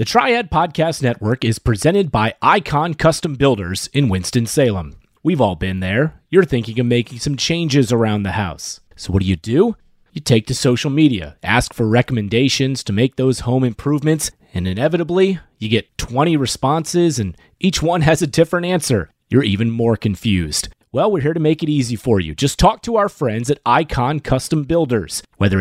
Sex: male